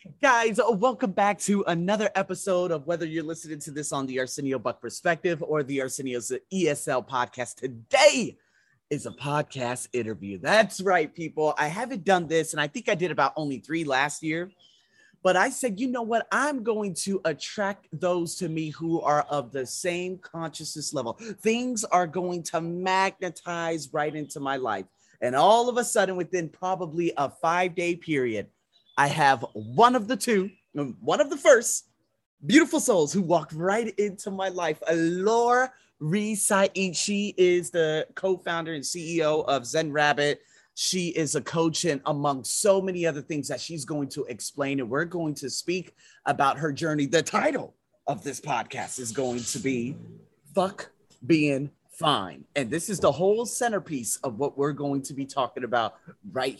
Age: 30-49